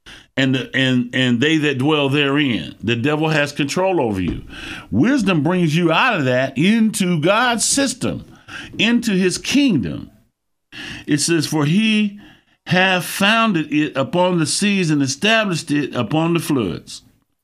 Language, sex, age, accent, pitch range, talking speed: English, male, 60-79, American, 140-215 Hz, 145 wpm